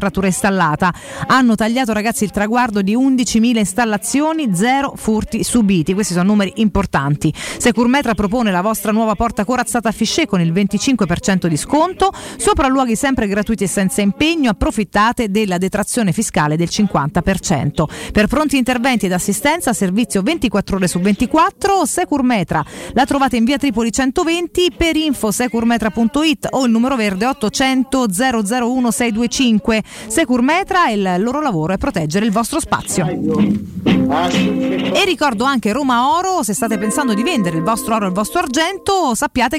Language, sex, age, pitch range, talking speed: Italian, female, 40-59, 200-270 Hz, 145 wpm